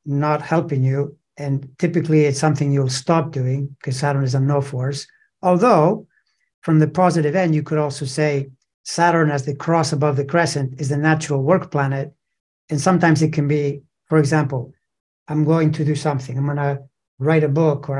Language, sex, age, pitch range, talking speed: English, male, 60-79, 145-170 Hz, 185 wpm